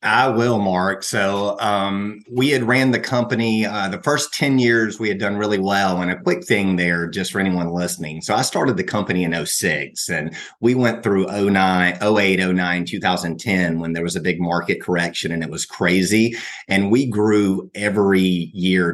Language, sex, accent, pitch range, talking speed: English, male, American, 85-100 Hz, 185 wpm